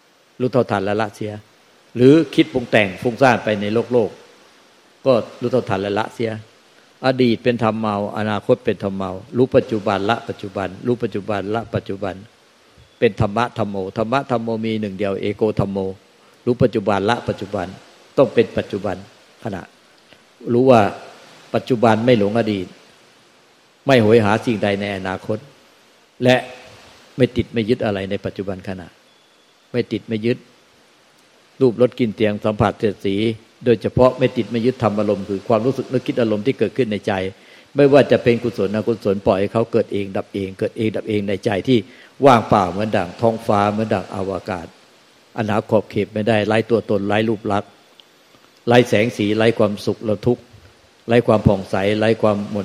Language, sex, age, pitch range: Thai, male, 60-79, 100-120 Hz